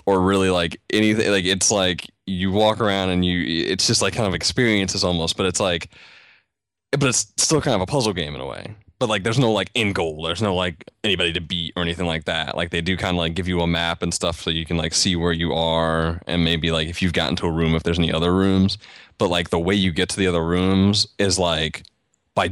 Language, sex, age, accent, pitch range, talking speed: English, male, 20-39, American, 85-100 Hz, 260 wpm